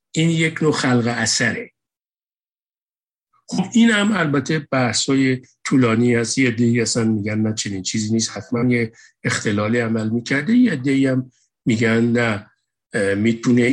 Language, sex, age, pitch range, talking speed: Persian, male, 50-69, 110-140 Hz, 130 wpm